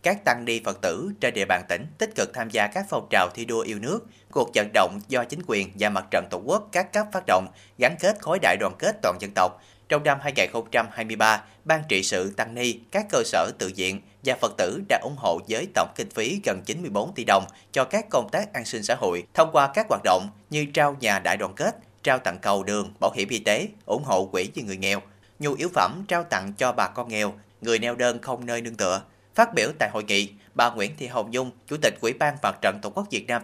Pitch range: 100-135 Hz